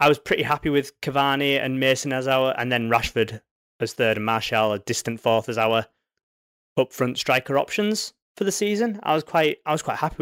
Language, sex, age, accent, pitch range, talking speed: English, male, 20-39, British, 110-140 Hz, 205 wpm